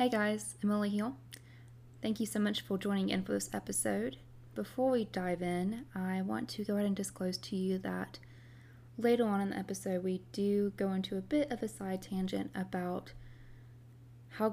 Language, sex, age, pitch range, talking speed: English, female, 20-39, 120-195 Hz, 190 wpm